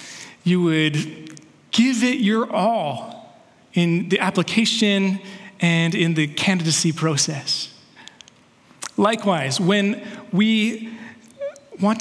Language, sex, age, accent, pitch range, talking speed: English, male, 30-49, American, 165-205 Hz, 90 wpm